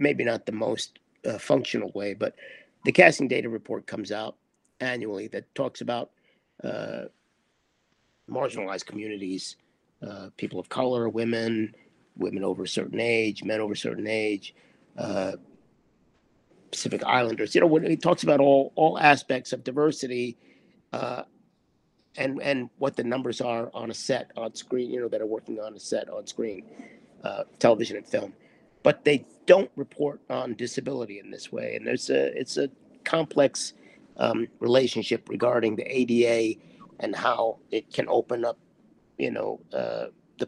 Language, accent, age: English, American, 50-69